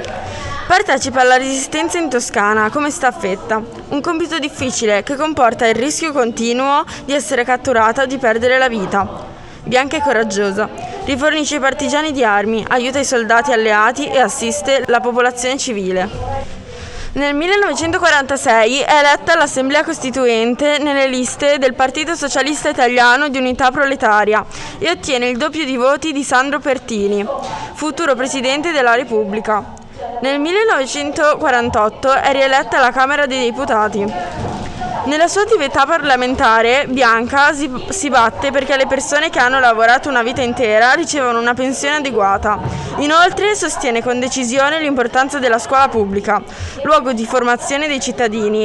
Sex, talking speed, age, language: female, 135 wpm, 20-39, Italian